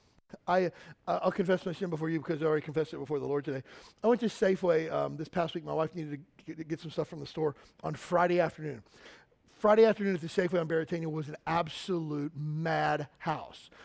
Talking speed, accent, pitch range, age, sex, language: 220 wpm, American, 165-200 Hz, 40-59, male, English